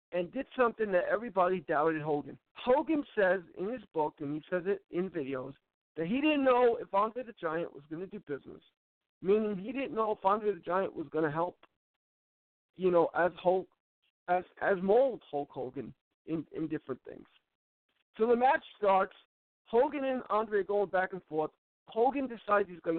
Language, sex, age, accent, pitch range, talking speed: English, male, 50-69, American, 170-225 Hz, 185 wpm